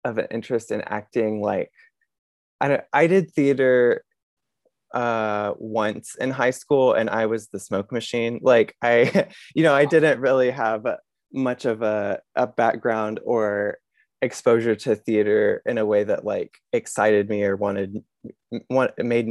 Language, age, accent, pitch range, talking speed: English, 20-39, American, 105-155 Hz, 155 wpm